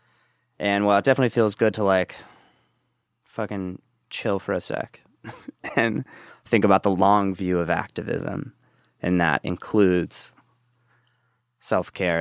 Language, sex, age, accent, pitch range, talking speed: English, male, 20-39, American, 90-120 Hz, 125 wpm